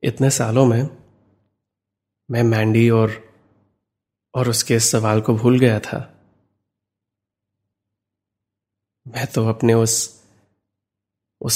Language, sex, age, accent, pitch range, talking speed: Hindi, male, 20-39, native, 100-120 Hz, 95 wpm